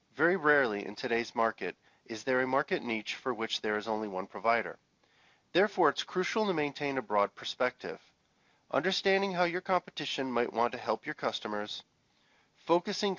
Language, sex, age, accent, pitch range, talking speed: English, male, 40-59, American, 115-170 Hz, 165 wpm